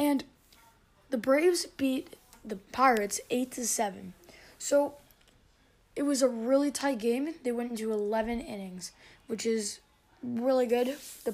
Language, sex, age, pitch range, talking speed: English, female, 10-29, 230-290 Hz, 140 wpm